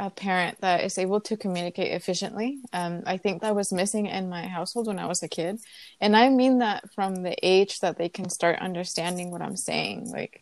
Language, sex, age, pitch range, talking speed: English, female, 20-39, 180-210 Hz, 220 wpm